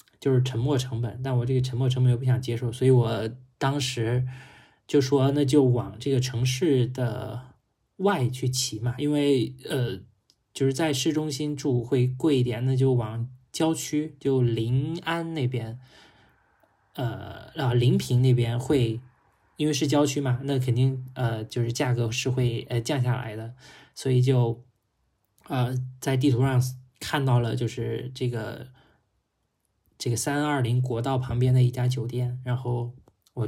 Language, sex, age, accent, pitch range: Chinese, male, 20-39, native, 120-135 Hz